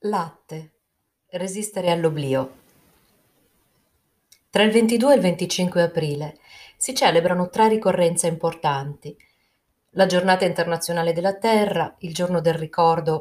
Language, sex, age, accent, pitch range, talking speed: Italian, female, 30-49, native, 155-195 Hz, 110 wpm